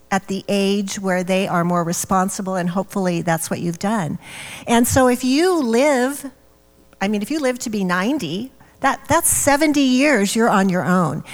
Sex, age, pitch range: female, 40-59, 180-220 Hz